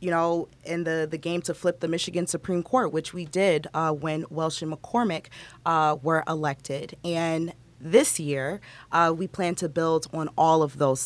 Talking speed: 190 wpm